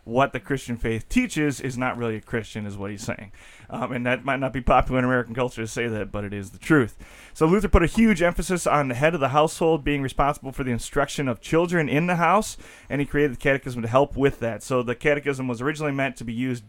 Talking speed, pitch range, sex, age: 260 wpm, 115-145 Hz, male, 30-49